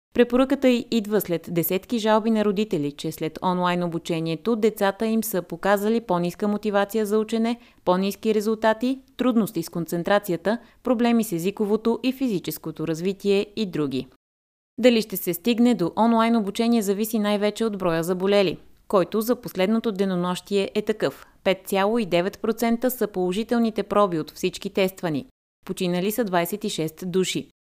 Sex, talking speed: female, 130 wpm